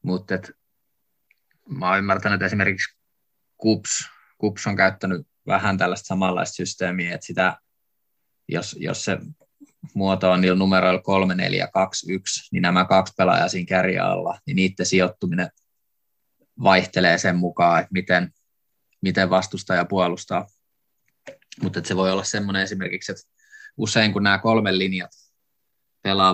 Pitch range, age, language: 90-100 Hz, 20-39, Finnish